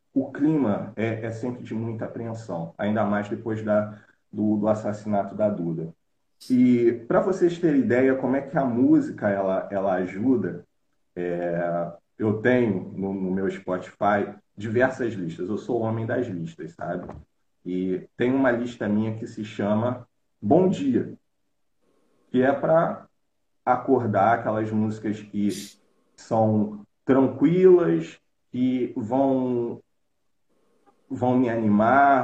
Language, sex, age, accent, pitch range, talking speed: Portuguese, male, 40-59, Brazilian, 105-130 Hz, 130 wpm